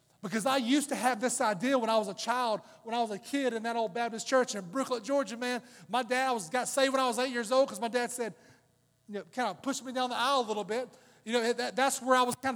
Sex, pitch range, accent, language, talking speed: male, 230-280 Hz, American, English, 285 wpm